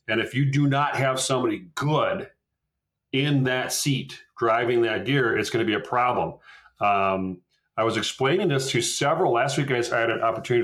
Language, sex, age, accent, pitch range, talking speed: English, male, 40-59, American, 115-150 Hz, 185 wpm